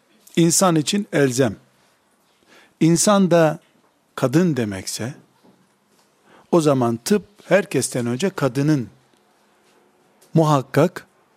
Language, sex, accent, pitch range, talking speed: Turkish, male, native, 135-200 Hz, 75 wpm